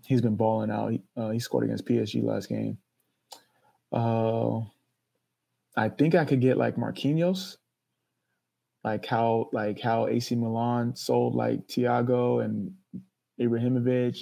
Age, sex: 20-39, male